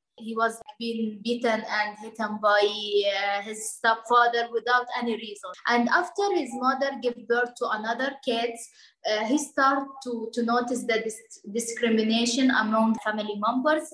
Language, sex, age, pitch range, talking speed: English, female, 20-39, 220-260 Hz, 145 wpm